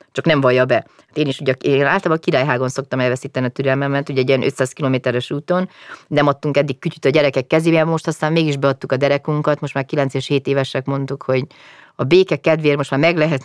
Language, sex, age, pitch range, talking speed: Hungarian, female, 30-49, 140-190 Hz, 225 wpm